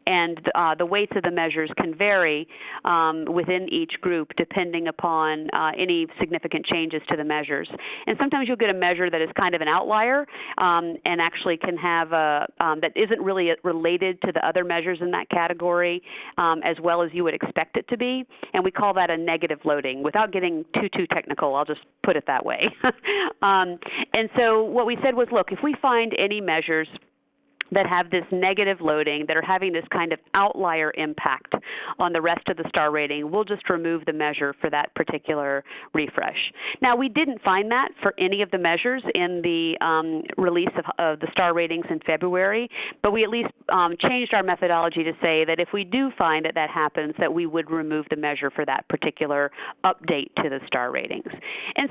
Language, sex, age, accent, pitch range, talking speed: English, female, 40-59, American, 160-205 Hz, 205 wpm